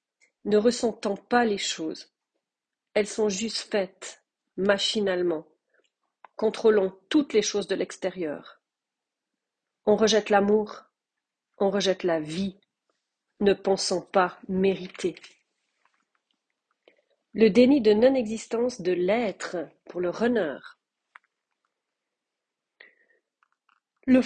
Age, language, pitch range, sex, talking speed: 40-59, French, 185-220 Hz, female, 90 wpm